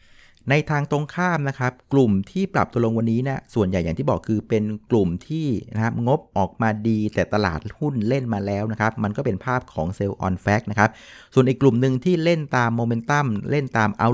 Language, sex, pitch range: Thai, male, 100-130 Hz